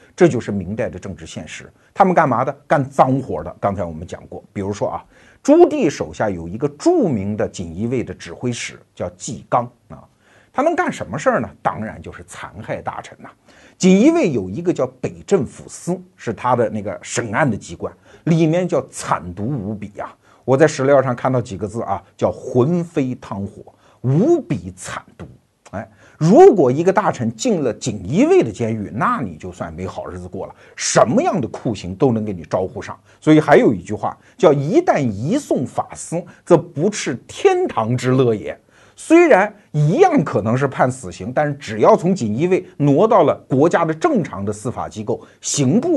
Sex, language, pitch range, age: male, Chinese, 105-180 Hz, 50-69